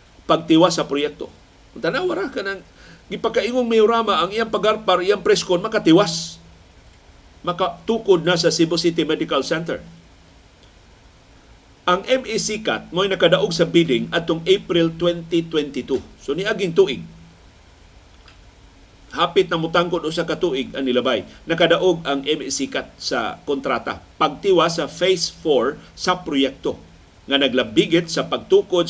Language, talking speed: Filipino, 115 wpm